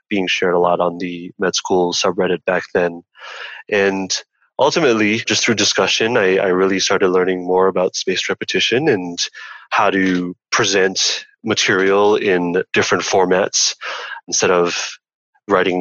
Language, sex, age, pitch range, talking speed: English, male, 20-39, 90-100 Hz, 135 wpm